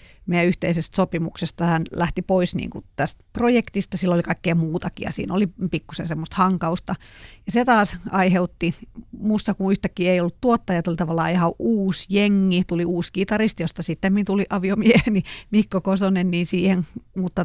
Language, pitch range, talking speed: Finnish, 170-200 Hz, 160 wpm